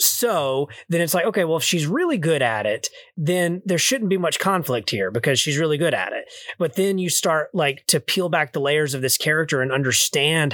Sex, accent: male, American